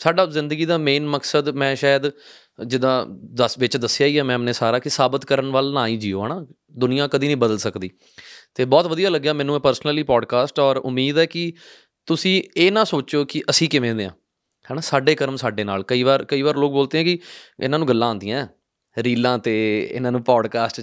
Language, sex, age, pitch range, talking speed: Punjabi, male, 20-39, 120-150 Hz, 200 wpm